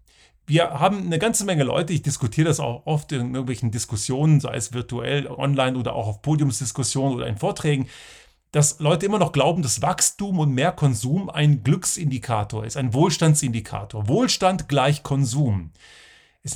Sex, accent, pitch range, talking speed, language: male, German, 125-160 Hz, 160 wpm, German